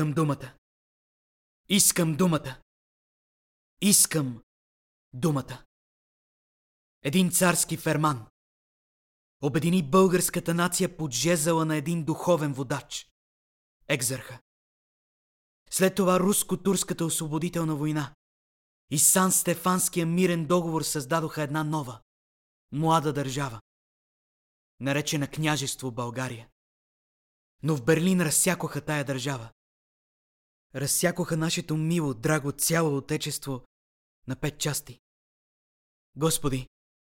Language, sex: Bulgarian, male